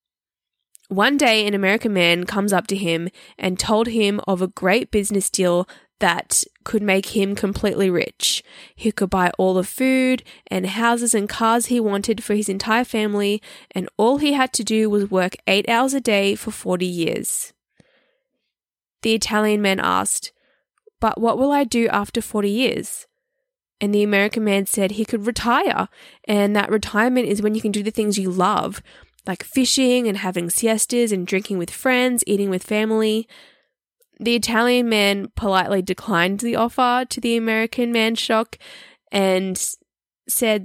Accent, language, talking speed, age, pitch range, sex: Australian, English, 165 wpm, 10-29, 195-240 Hz, female